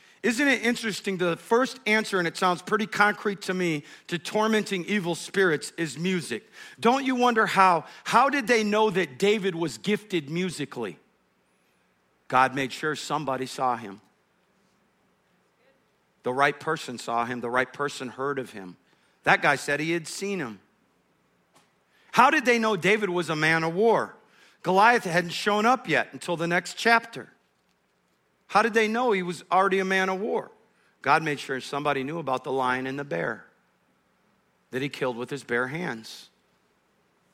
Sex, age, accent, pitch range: male, 50-69, American, 150-210 Hz